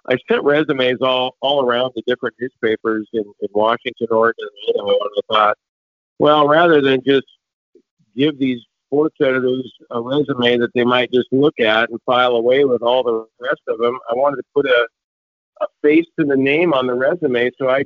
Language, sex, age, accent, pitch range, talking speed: English, male, 50-69, American, 115-135 Hz, 195 wpm